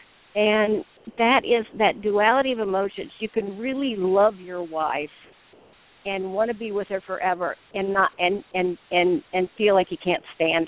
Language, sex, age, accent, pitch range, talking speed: English, female, 50-69, American, 180-250 Hz, 175 wpm